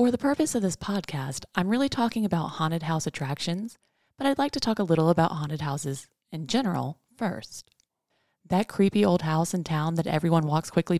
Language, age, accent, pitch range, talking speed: English, 20-39, American, 150-205 Hz, 195 wpm